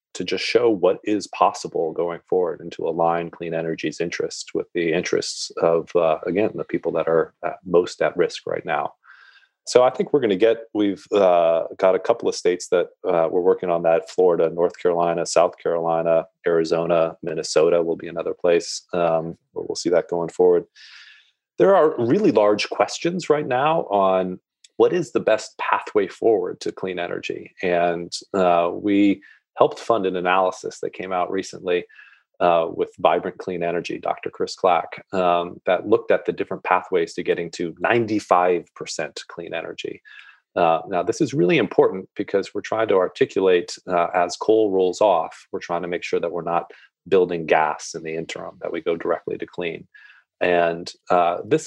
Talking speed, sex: 180 wpm, male